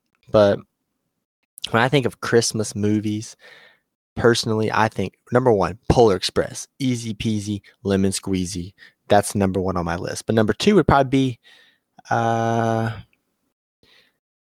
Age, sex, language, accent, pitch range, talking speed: 20-39, male, English, American, 100-125 Hz, 130 wpm